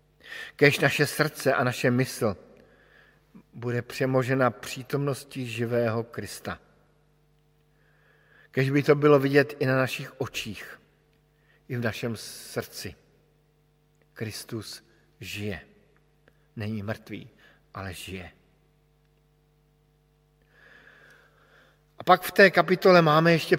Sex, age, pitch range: male, 50-69, 125-150 Hz